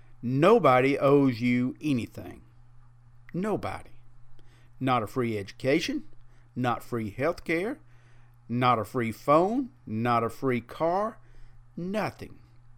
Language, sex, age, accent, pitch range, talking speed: English, male, 50-69, American, 120-160 Hz, 105 wpm